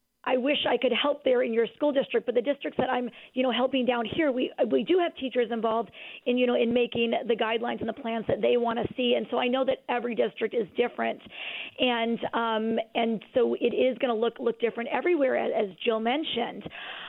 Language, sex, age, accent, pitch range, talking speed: English, female, 40-59, American, 235-275 Hz, 230 wpm